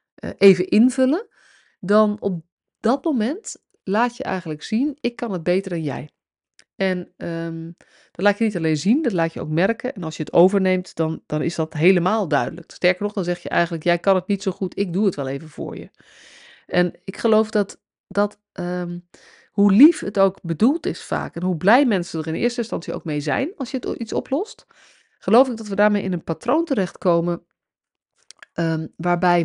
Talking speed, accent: 195 wpm, Dutch